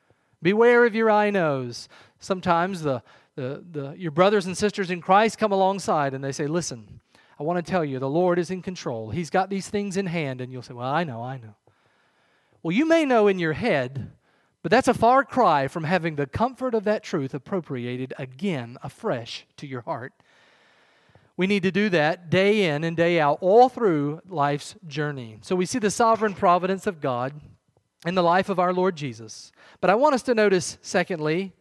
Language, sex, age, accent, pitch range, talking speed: English, male, 40-59, American, 150-215 Hz, 200 wpm